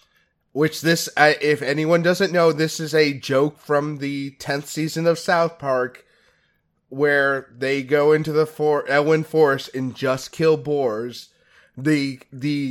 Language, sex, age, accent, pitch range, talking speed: English, male, 30-49, American, 135-160 Hz, 150 wpm